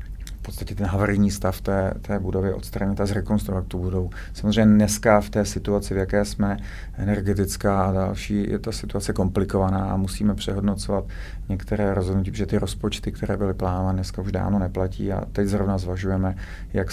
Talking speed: 170 wpm